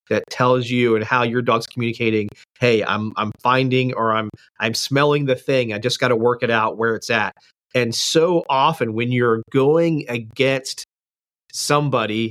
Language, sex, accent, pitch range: English, male, American, 115-145 Hz